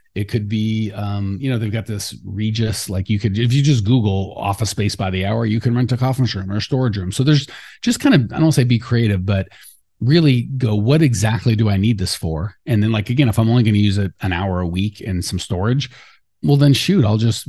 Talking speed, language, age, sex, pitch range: 255 wpm, English, 30-49, male, 95-120 Hz